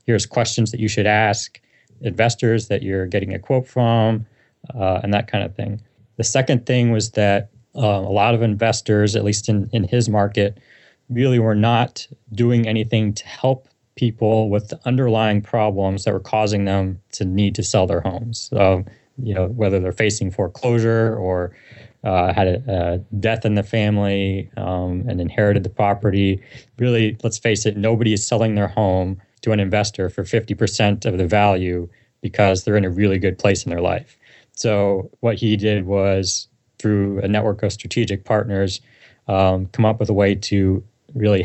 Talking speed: 180 wpm